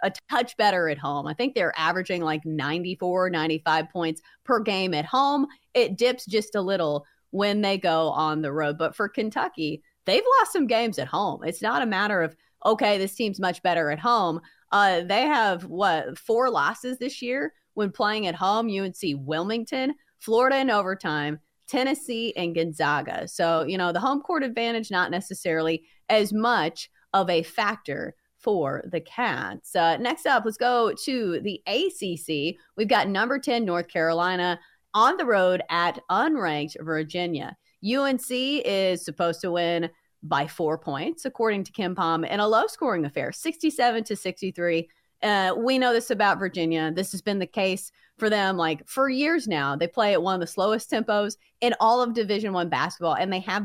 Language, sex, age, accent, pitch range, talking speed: English, female, 30-49, American, 165-235 Hz, 180 wpm